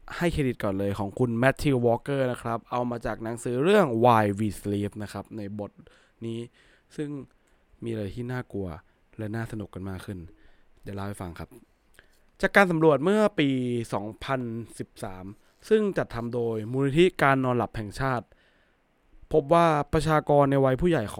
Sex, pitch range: male, 110-145 Hz